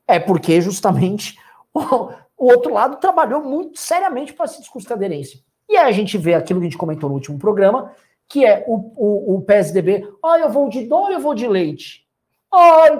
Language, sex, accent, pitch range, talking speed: Portuguese, male, Brazilian, 190-300 Hz, 205 wpm